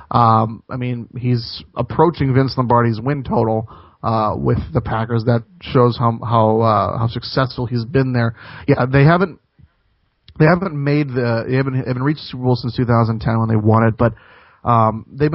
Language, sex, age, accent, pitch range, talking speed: English, male, 30-49, American, 115-130 Hz, 180 wpm